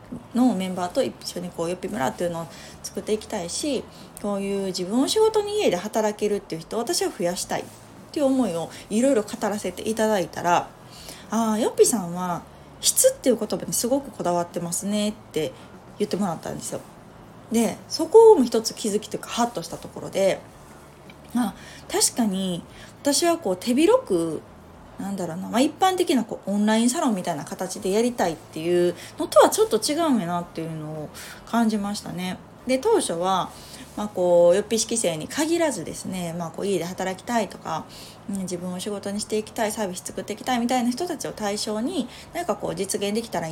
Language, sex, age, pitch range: Japanese, female, 20-39, 180-255 Hz